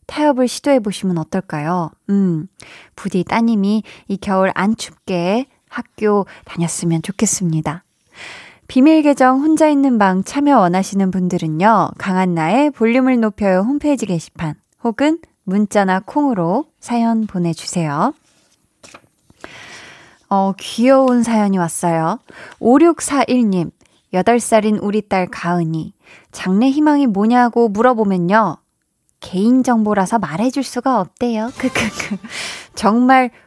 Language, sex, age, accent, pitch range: Korean, female, 20-39, native, 185-260 Hz